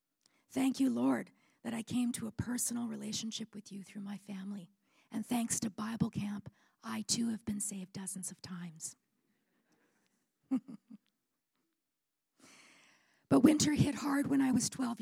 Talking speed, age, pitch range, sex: 145 wpm, 40-59, 200-235 Hz, female